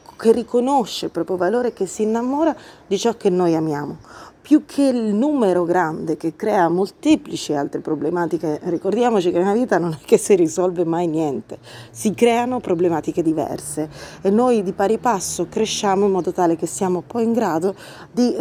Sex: female